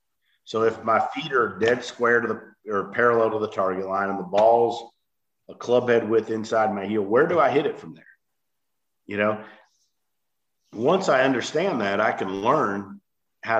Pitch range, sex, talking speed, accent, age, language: 100-120 Hz, male, 185 wpm, American, 50-69, English